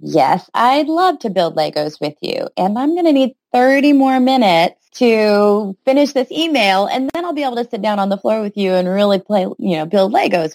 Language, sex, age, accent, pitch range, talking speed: English, female, 30-49, American, 175-245 Hz, 230 wpm